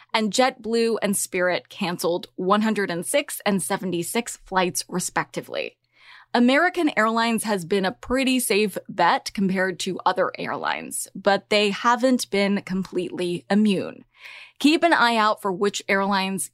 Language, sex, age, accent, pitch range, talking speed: English, female, 20-39, American, 190-250 Hz, 125 wpm